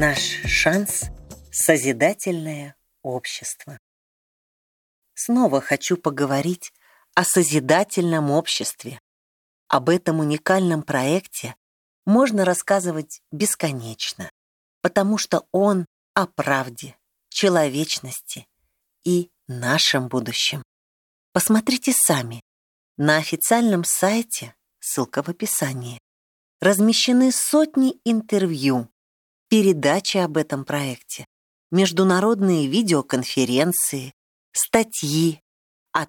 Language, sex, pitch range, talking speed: Russian, female, 130-185 Hz, 75 wpm